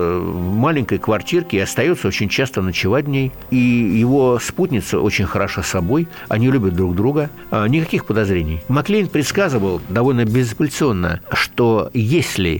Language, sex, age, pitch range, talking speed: Russian, male, 60-79, 100-135 Hz, 135 wpm